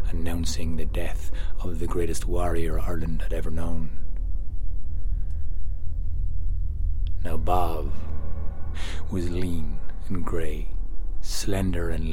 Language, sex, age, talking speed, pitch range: English, male, 30-49, 95 wpm, 75-90 Hz